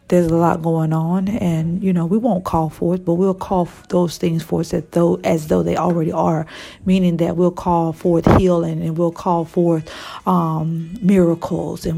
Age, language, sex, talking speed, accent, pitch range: 40-59, English, female, 190 wpm, American, 160-180 Hz